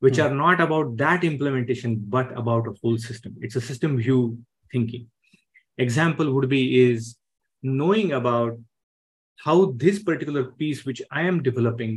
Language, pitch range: English, 115-145 Hz